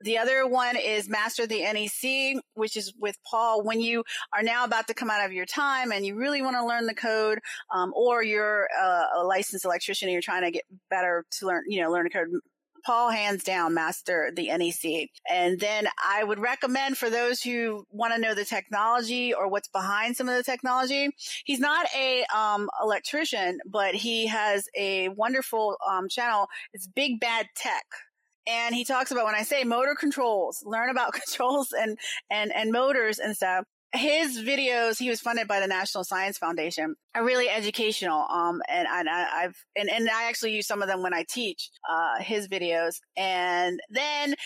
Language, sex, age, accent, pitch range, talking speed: English, female, 30-49, American, 200-250 Hz, 195 wpm